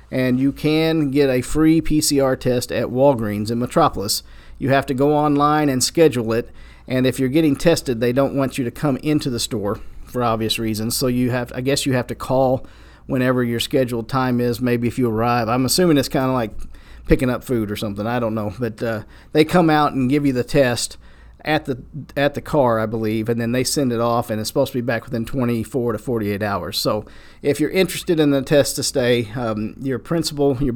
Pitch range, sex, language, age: 115-140 Hz, male, English, 50-69